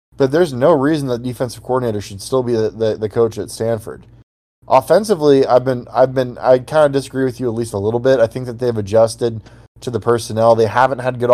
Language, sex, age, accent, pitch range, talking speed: English, male, 20-39, American, 115-130 Hz, 235 wpm